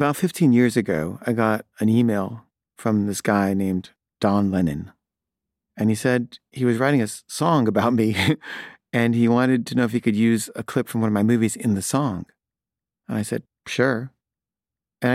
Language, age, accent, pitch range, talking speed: English, 40-59, American, 105-120 Hz, 190 wpm